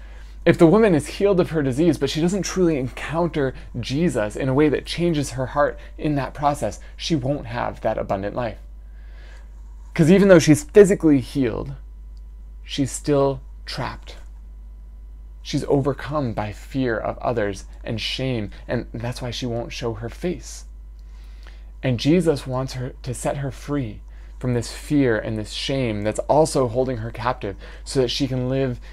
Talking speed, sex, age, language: 165 wpm, male, 20-39, English